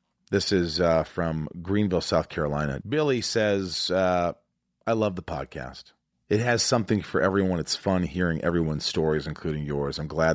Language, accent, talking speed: English, American, 160 wpm